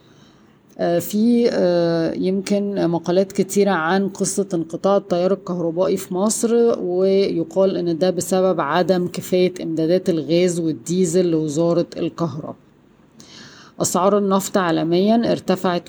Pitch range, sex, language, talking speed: 165-190 Hz, female, Arabic, 100 wpm